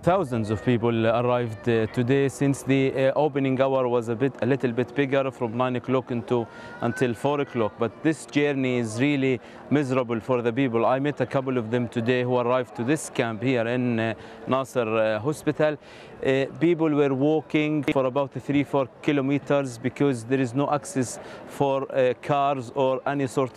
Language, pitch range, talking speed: English, 125-140 Hz, 180 wpm